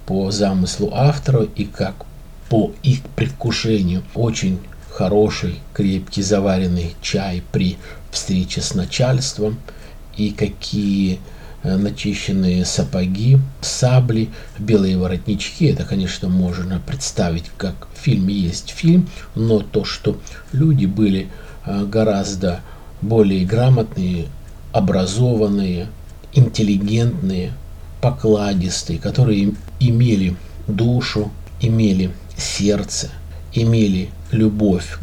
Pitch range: 90-110 Hz